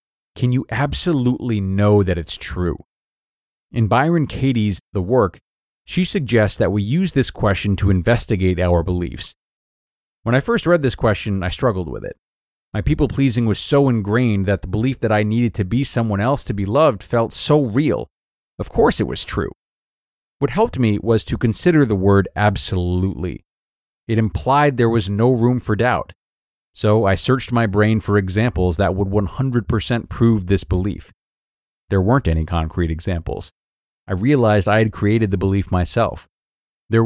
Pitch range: 95-120 Hz